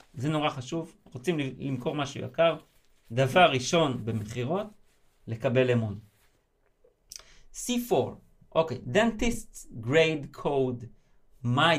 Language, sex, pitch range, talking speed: Hebrew, male, 125-175 Hz, 95 wpm